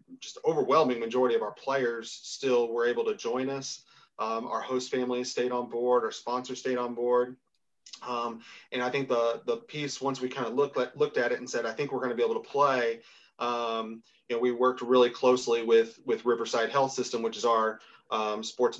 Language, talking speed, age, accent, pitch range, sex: English, 210 wpm, 30-49, American, 120-135 Hz, male